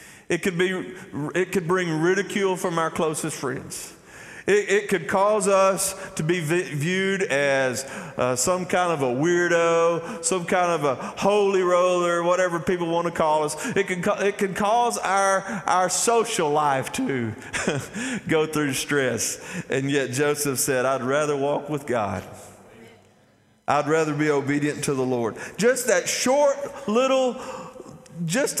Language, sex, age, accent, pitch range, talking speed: English, male, 40-59, American, 135-195 Hz, 155 wpm